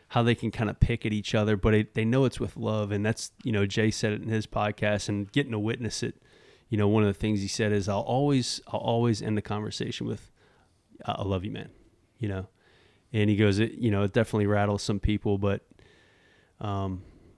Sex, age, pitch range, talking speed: male, 20-39, 100-115 Hz, 235 wpm